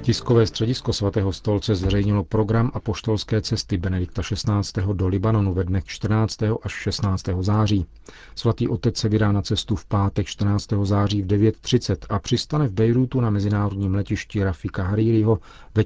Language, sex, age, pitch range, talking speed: Czech, male, 40-59, 95-110 Hz, 155 wpm